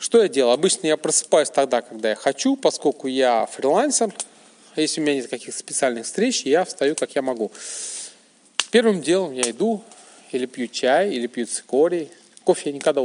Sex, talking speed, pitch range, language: male, 180 wpm, 120-180 Hz, Russian